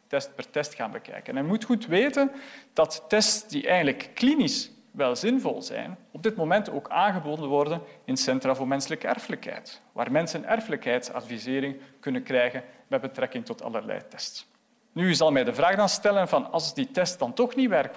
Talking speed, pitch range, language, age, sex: 185 wpm, 155-240 Hz, Dutch, 40-59, male